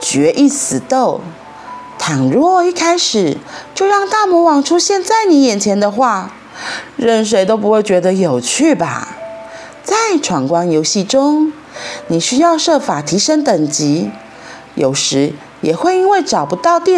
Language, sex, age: Chinese, female, 30-49